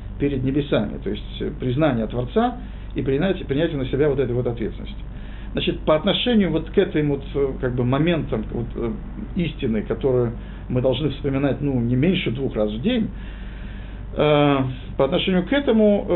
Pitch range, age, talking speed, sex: 115-160 Hz, 50-69, 150 wpm, male